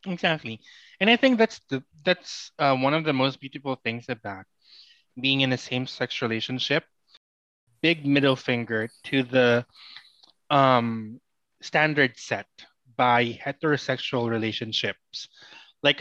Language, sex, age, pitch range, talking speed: Filipino, male, 20-39, 120-150 Hz, 120 wpm